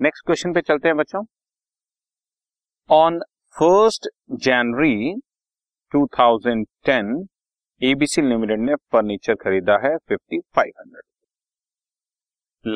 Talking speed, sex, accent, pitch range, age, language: 80 wpm, male, native, 115-175 Hz, 30-49, Hindi